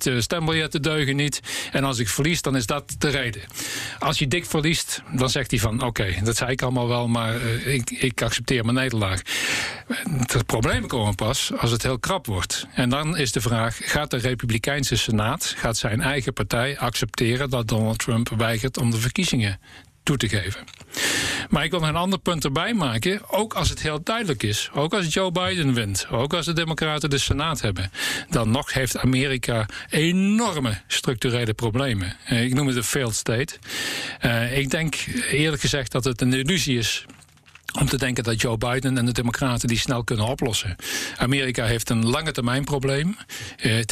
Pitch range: 120-150 Hz